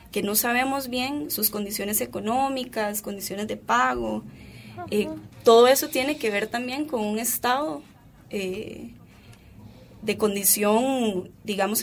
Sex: female